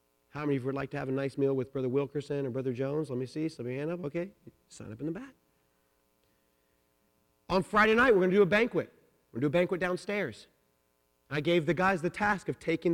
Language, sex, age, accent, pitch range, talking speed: English, male, 30-49, American, 125-190 Hz, 250 wpm